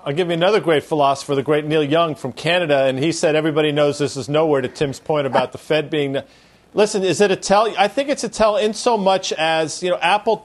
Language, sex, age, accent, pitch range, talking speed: English, male, 40-59, American, 150-185 Hz, 260 wpm